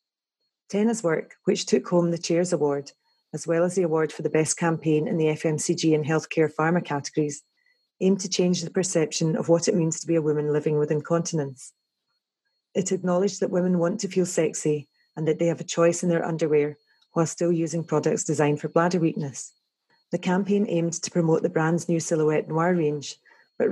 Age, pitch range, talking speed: 30-49, 155-175 Hz, 195 wpm